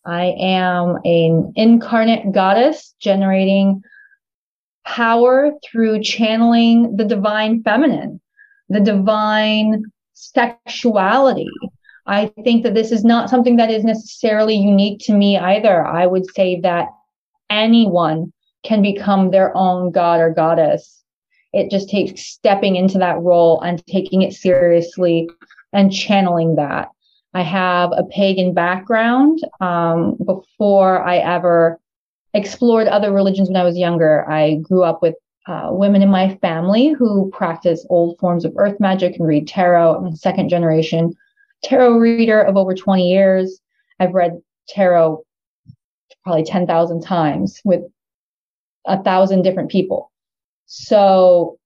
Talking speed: 130 wpm